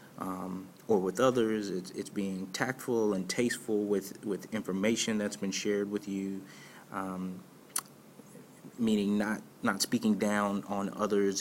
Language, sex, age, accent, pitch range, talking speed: English, male, 30-49, American, 95-105 Hz, 135 wpm